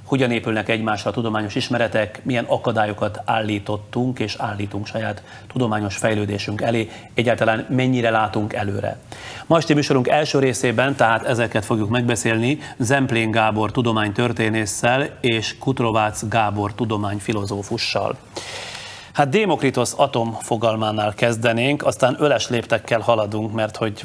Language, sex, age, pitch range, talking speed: Hungarian, male, 30-49, 110-125 Hz, 115 wpm